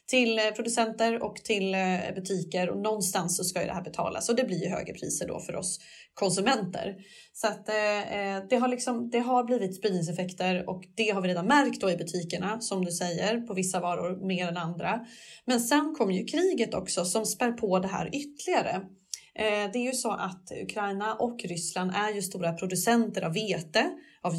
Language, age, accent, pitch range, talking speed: Swedish, 20-39, native, 185-235 Hz, 190 wpm